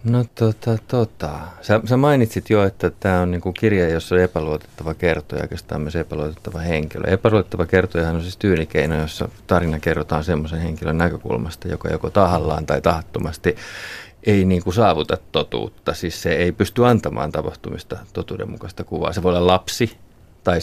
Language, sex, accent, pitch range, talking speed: Finnish, male, native, 85-105 Hz, 155 wpm